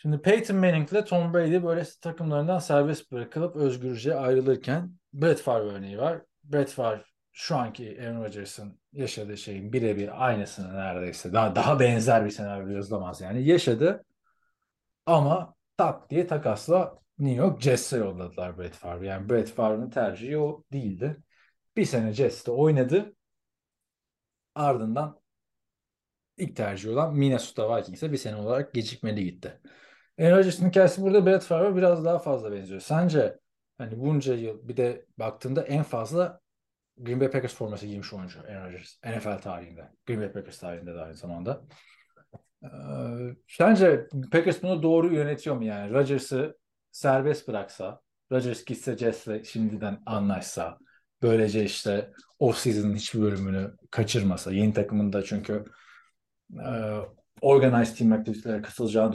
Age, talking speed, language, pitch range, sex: 40-59, 135 wpm, Turkish, 105-150 Hz, male